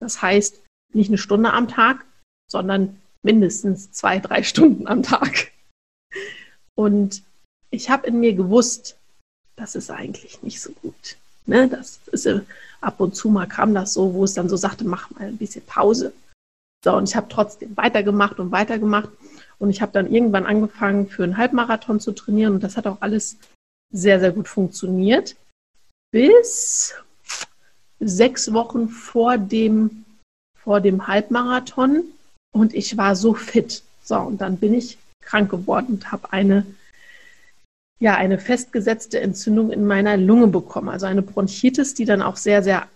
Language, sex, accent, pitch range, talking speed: German, female, German, 200-240 Hz, 150 wpm